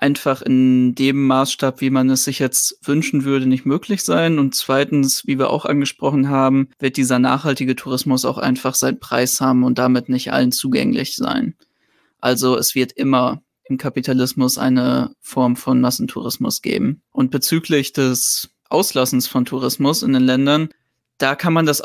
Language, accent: German, German